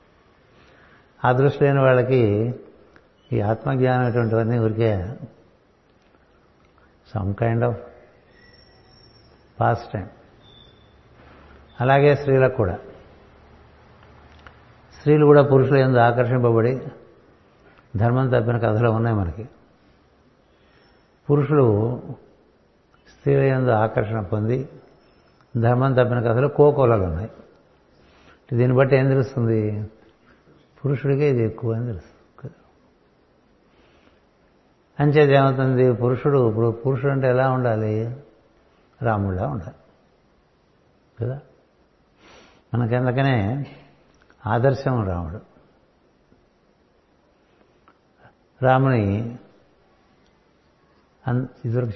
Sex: male